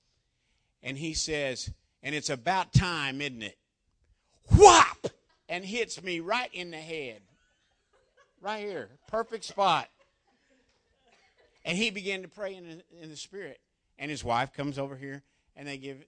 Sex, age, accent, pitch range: male, 50-69, American, 125-185 Hz